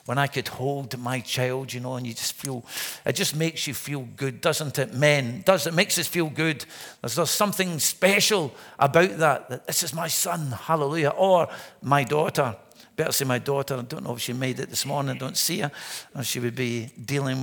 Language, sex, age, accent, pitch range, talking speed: English, male, 50-69, British, 130-165 Hz, 220 wpm